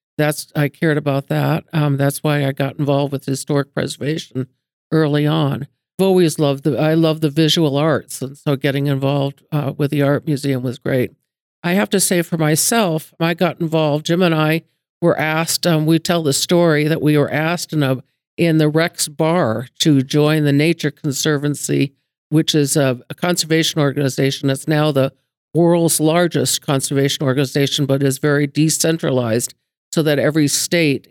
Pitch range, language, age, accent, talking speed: 135-155 Hz, English, 60-79, American, 175 wpm